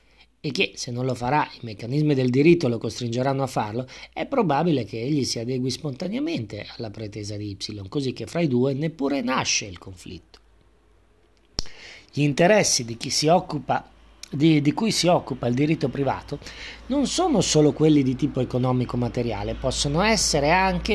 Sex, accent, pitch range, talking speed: male, native, 120-170 Hz, 170 wpm